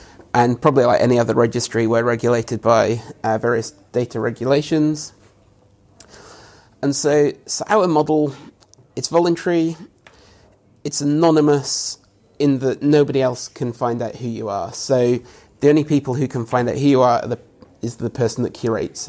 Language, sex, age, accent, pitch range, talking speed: English, male, 30-49, British, 115-145 Hz, 155 wpm